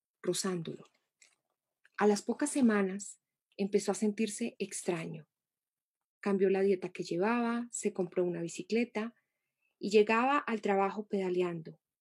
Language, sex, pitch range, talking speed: Spanish, female, 195-230 Hz, 115 wpm